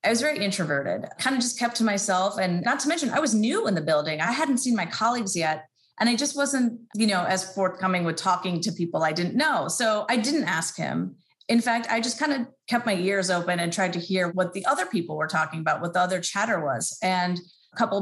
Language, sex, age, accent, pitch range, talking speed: English, female, 30-49, American, 175-235 Hz, 250 wpm